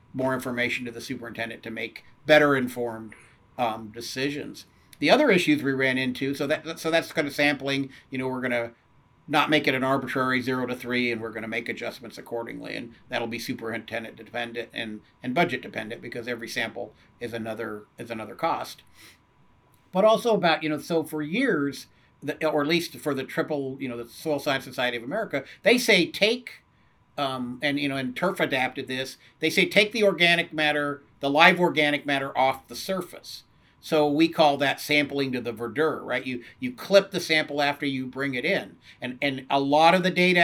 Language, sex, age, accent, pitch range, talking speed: English, male, 50-69, American, 125-160 Hz, 195 wpm